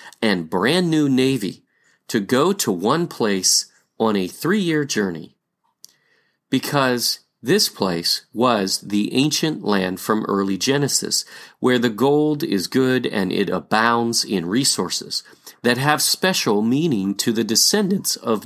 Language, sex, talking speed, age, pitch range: English, male, 135 wpm, 40-59, 105-145 Hz